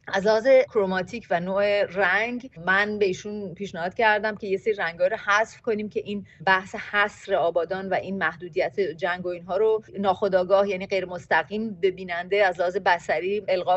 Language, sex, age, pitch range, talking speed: Persian, female, 30-49, 185-240 Hz, 165 wpm